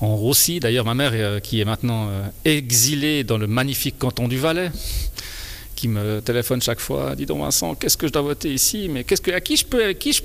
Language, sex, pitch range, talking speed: French, male, 115-155 Hz, 240 wpm